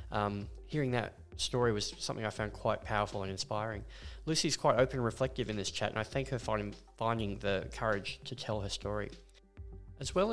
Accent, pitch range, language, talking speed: Australian, 100-115 Hz, English, 190 wpm